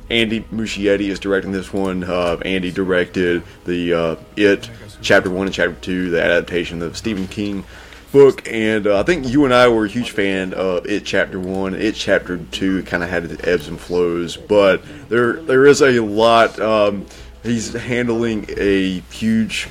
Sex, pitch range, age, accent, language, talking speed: male, 90-110 Hz, 30-49, American, English, 180 wpm